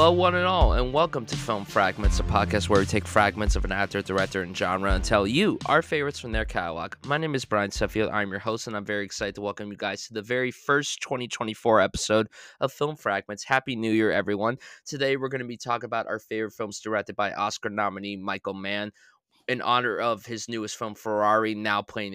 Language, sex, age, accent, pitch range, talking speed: English, male, 20-39, American, 100-125 Hz, 225 wpm